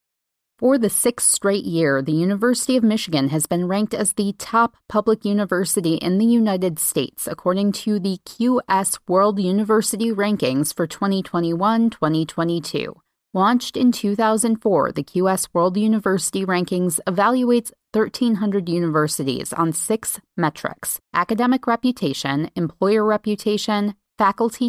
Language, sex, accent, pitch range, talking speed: English, female, American, 165-220 Hz, 115 wpm